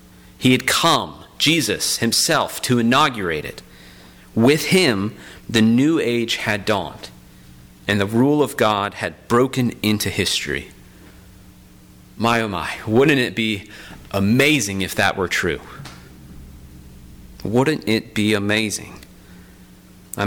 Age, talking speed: 40-59, 120 wpm